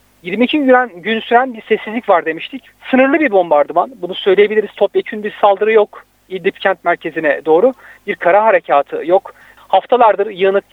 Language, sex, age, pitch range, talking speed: Turkish, male, 40-59, 185-235 Hz, 150 wpm